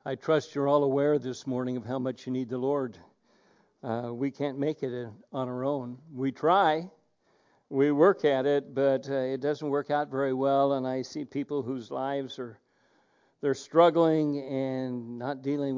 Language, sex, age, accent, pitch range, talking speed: English, male, 60-79, American, 130-190 Hz, 185 wpm